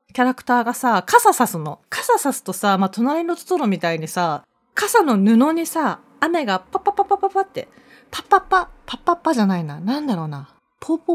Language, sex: Japanese, female